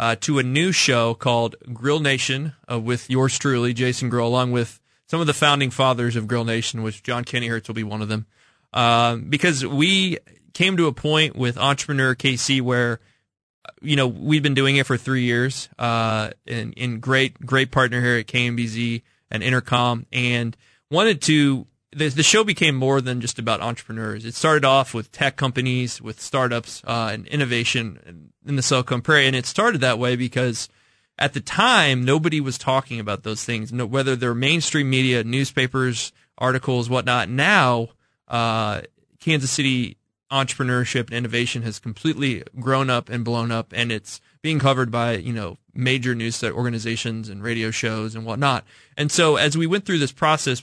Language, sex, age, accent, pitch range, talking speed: English, male, 20-39, American, 115-140 Hz, 185 wpm